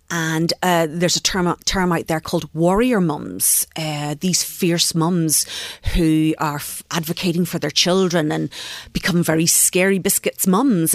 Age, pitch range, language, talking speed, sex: 40-59, 160-195 Hz, English, 150 wpm, female